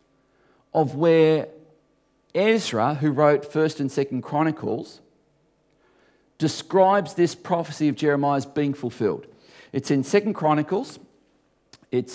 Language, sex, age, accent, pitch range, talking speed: English, male, 40-59, Australian, 120-155 Hz, 105 wpm